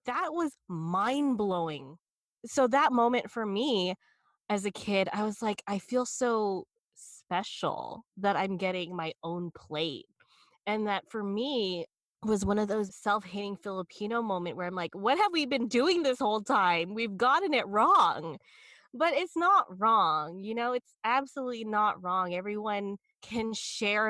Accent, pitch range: American, 170-215 Hz